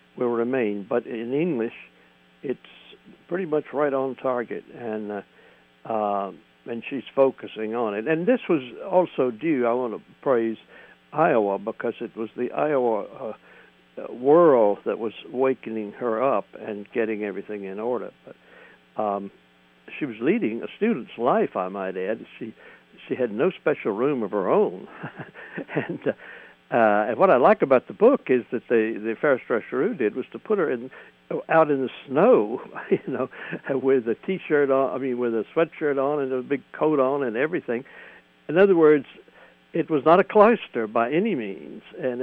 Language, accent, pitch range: English, American, 105-145 Hz